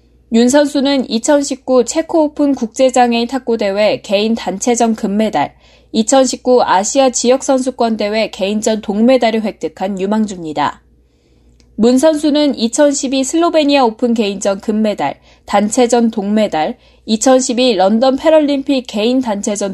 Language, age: Korean, 20-39